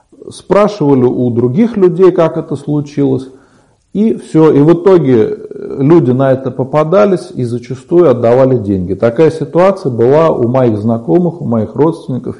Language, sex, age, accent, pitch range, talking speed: Russian, male, 40-59, native, 115-145 Hz, 140 wpm